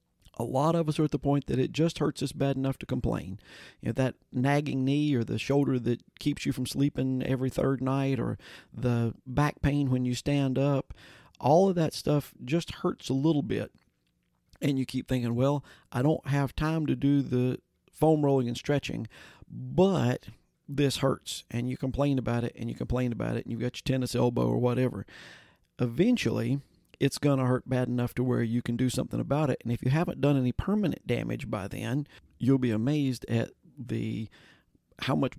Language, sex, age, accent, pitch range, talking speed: English, male, 40-59, American, 115-140 Hz, 200 wpm